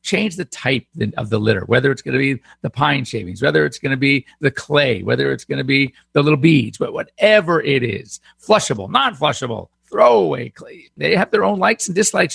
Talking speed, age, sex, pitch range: 215 wpm, 50-69, male, 115-165 Hz